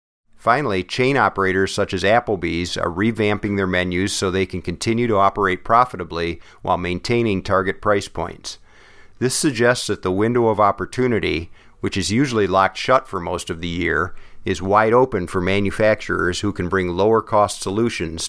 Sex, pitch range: male, 95-115 Hz